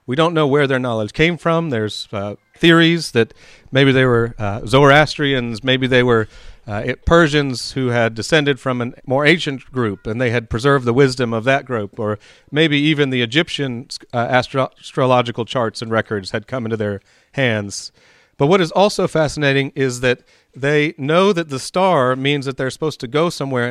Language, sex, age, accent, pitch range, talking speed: English, male, 40-59, American, 115-150 Hz, 185 wpm